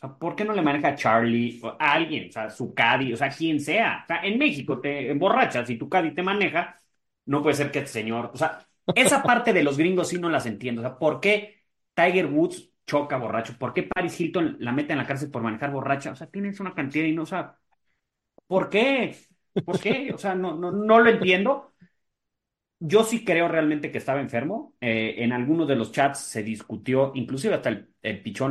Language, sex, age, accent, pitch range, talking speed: Spanish, male, 30-49, Mexican, 120-190 Hz, 225 wpm